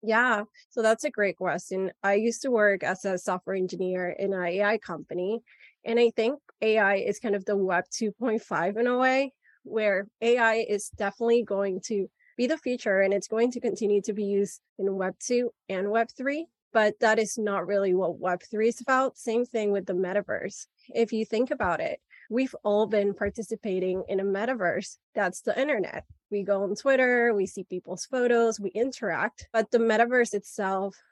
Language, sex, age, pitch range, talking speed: English, female, 20-39, 195-235 Hz, 190 wpm